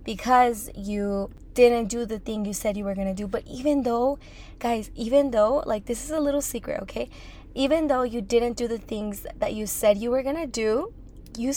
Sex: female